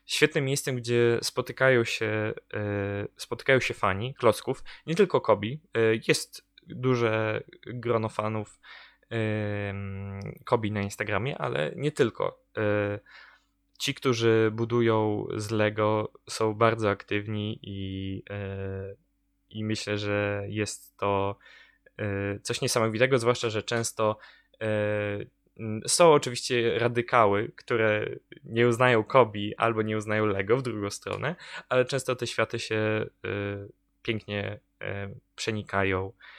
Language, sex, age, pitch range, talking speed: Polish, male, 20-39, 100-120 Hz, 100 wpm